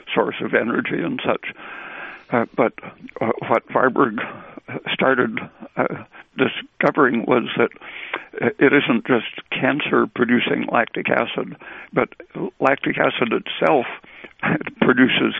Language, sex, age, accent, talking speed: English, male, 60-79, American, 105 wpm